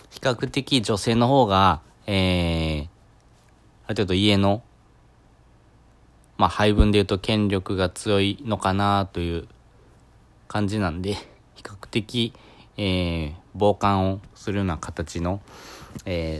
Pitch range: 90-115 Hz